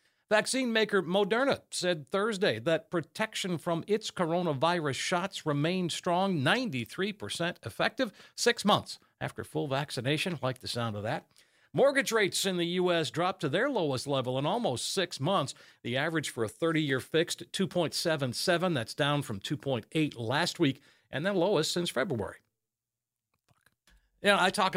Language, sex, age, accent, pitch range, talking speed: English, male, 50-69, American, 140-185 Hz, 155 wpm